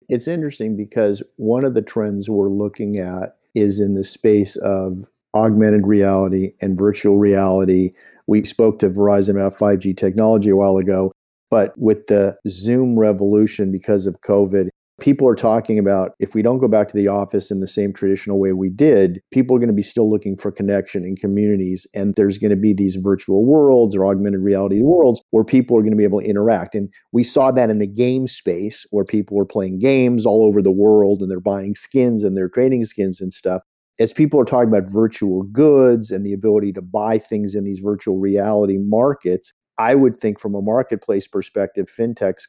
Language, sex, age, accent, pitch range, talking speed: English, male, 50-69, American, 100-110 Hz, 200 wpm